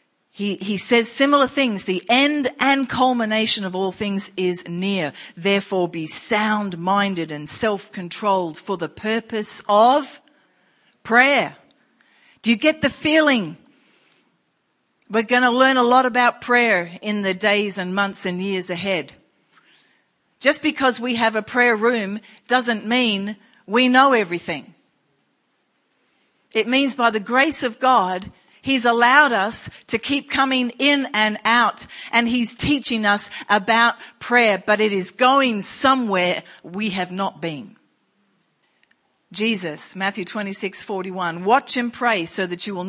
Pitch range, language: 185-245 Hz, English